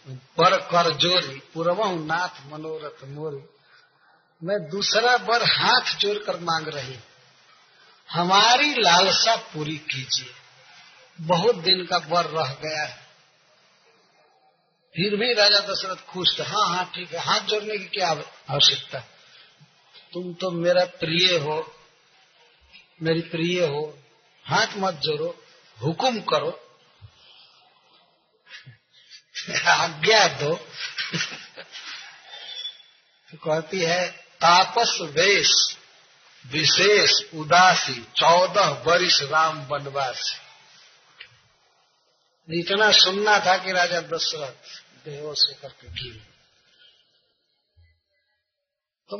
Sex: male